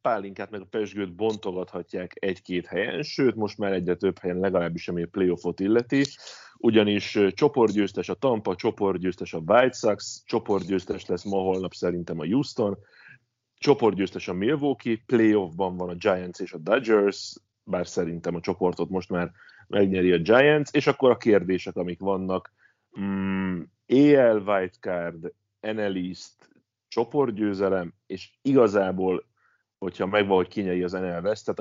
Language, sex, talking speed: Hungarian, male, 135 wpm